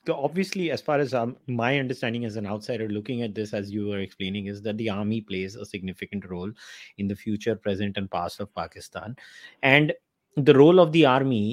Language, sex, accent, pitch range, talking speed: English, male, Indian, 110-135 Hz, 210 wpm